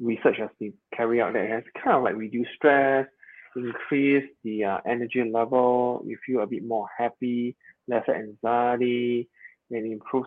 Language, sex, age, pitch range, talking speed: English, male, 20-39, 115-140 Hz, 160 wpm